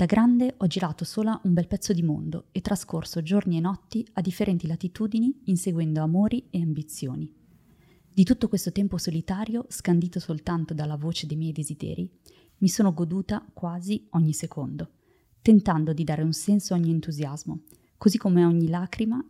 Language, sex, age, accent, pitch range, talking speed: Italian, female, 20-39, native, 160-195 Hz, 165 wpm